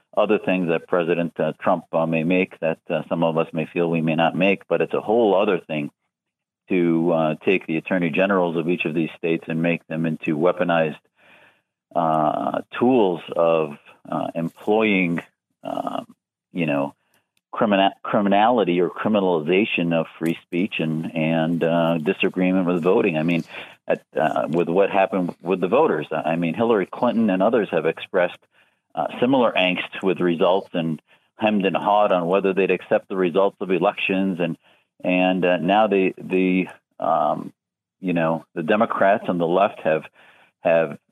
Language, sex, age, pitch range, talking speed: English, male, 50-69, 80-95 Hz, 165 wpm